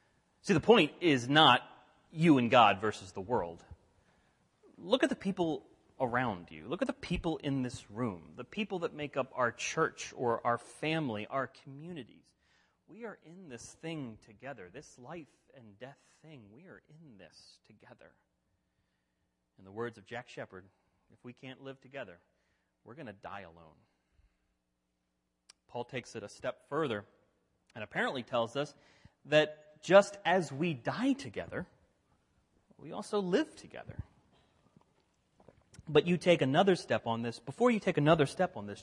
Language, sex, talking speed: English, male, 155 wpm